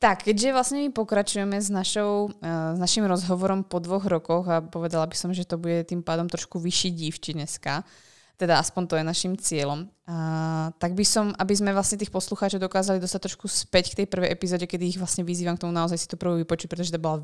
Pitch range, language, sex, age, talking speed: 165-190 Hz, Slovak, female, 20-39, 225 wpm